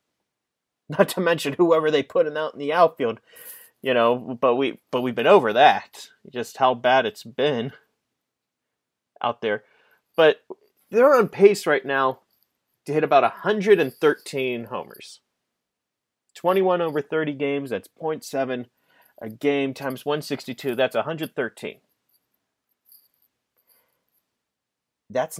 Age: 30-49